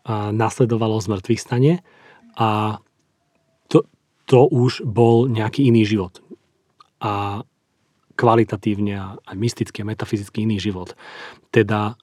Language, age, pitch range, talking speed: Slovak, 40-59, 110-120 Hz, 105 wpm